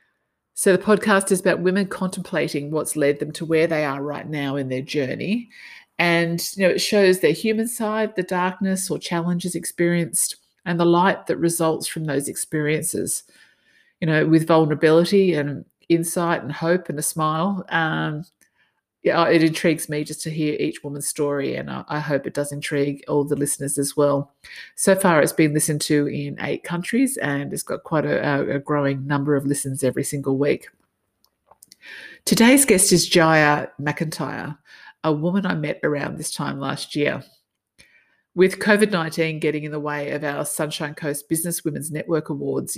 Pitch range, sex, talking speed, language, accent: 145-180 Hz, female, 175 wpm, English, Australian